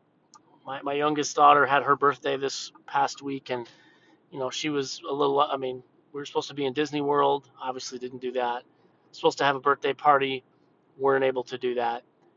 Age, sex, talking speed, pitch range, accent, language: 30-49, male, 200 wpm, 135-155 Hz, American, English